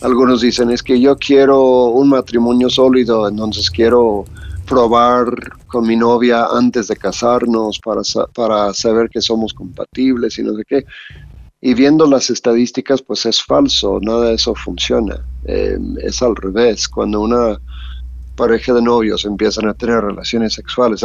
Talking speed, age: 155 wpm, 50-69